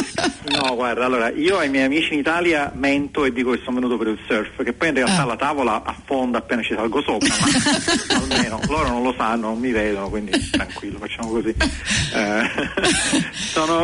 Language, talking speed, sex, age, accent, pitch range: Italian, 190 wpm, male, 40-59, native, 110-135 Hz